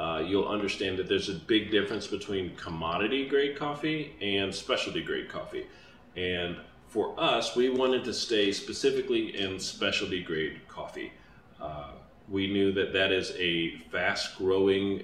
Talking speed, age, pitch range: 130 wpm, 30-49, 95-140 Hz